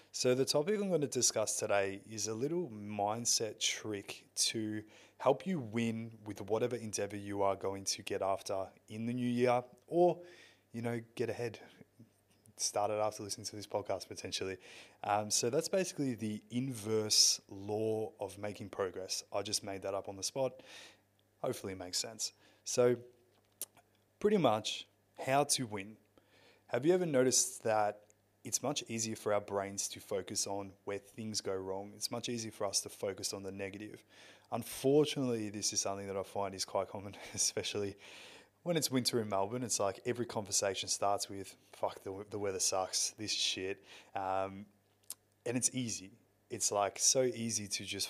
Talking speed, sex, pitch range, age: 170 wpm, male, 100-120 Hz, 20-39